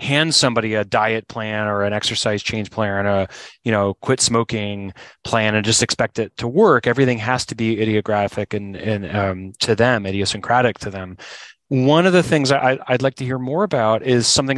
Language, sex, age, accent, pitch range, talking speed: English, male, 30-49, American, 105-130 Hz, 200 wpm